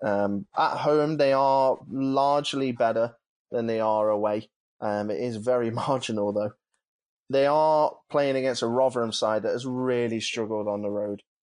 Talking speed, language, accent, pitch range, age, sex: 165 wpm, English, British, 110-130 Hz, 20-39, male